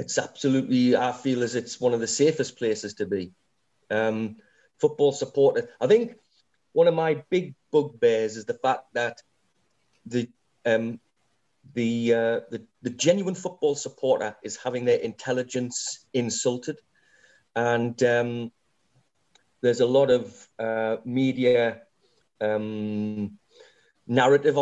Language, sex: English, male